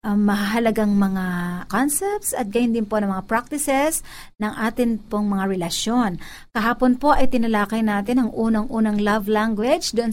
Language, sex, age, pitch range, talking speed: Filipino, female, 50-69, 210-260 Hz, 155 wpm